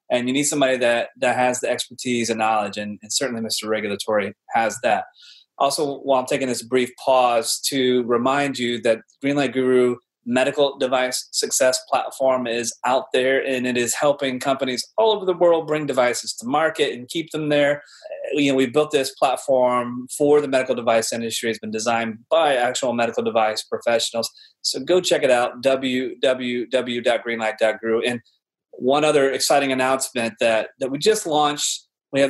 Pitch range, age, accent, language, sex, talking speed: 120-145 Hz, 30-49, American, English, male, 170 wpm